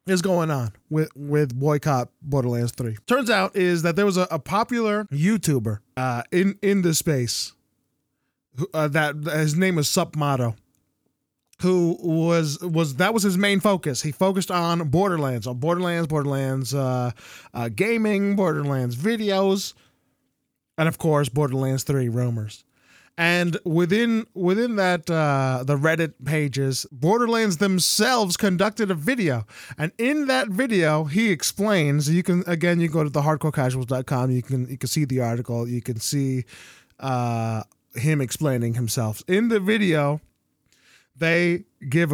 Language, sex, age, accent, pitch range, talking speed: English, male, 20-39, American, 135-190 Hz, 145 wpm